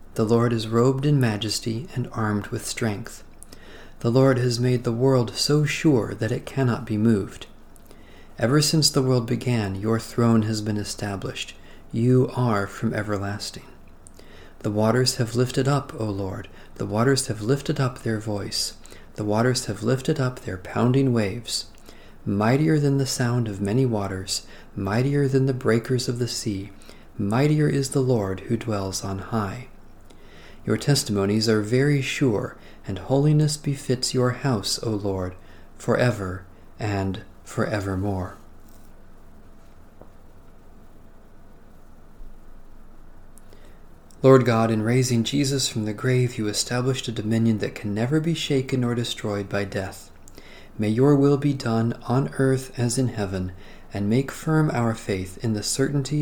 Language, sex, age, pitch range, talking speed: English, male, 40-59, 100-130 Hz, 145 wpm